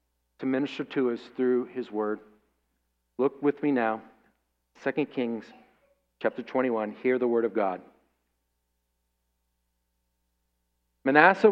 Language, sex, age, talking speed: English, male, 40-59, 110 wpm